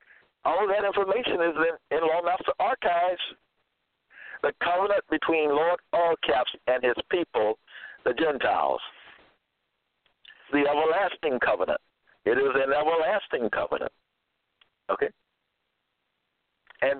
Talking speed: 105 wpm